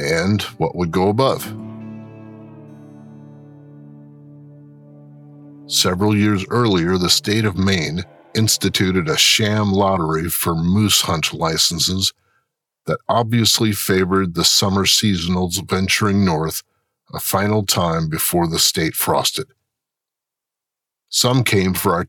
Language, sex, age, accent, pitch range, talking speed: English, male, 50-69, American, 90-110 Hz, 105 wpm